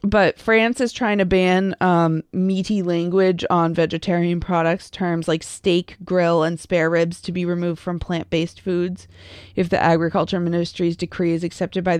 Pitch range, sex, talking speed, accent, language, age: 175-205 Hz, female, 165 wpm, American, English, 20-39